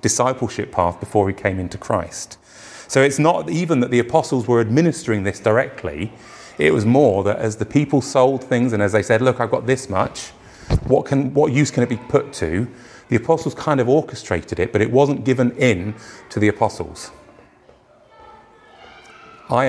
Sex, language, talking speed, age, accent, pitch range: male, English, 185 wpm, 30-49, British, 105-135 Hz